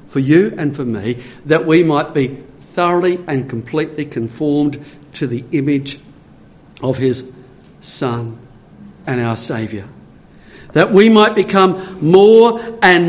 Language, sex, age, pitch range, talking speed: English, male, 50-69, 135-195 Hz, 130 wpm